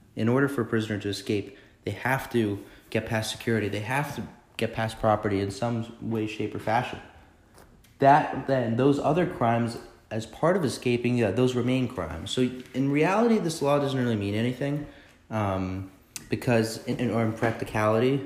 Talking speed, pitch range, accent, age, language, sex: 180 wpm, 105-125 Hz, American, 30-49, English, male